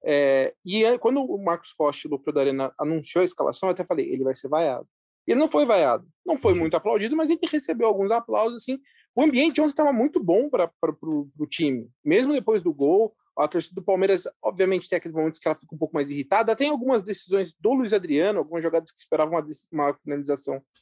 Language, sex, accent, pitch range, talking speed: Portuguese, male, Brazilian, 155-245 Hz, 215 wpm